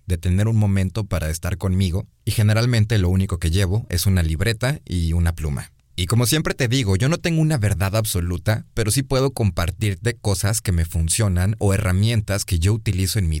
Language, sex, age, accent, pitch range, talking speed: Spanish, male, 30-49, Mexican, 90-115 Hz, 200 wpm